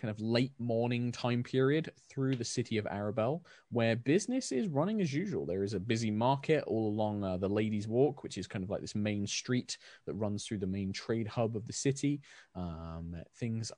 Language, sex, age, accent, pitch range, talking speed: English, male, 20-39, British, 95-125 Hz, 210 wpm